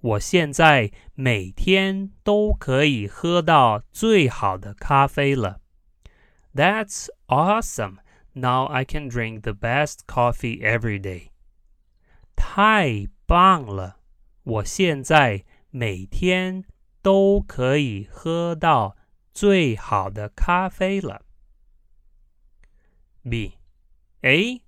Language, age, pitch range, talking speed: English, 30-49, 100-165 Hz, 30 wpm